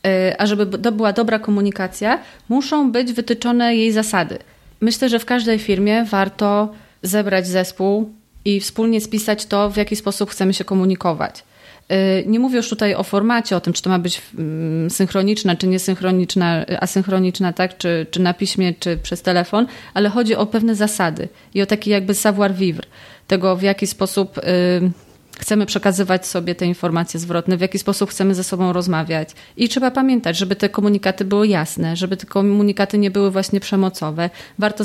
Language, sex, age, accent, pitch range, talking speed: Polish, female, 30-49, native, 185-210 Hz, 165 wpm